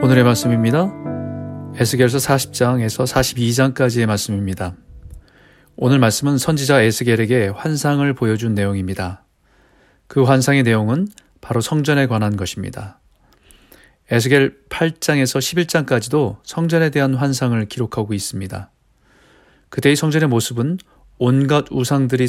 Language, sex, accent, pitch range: Korean, male, native, 110-140 Hz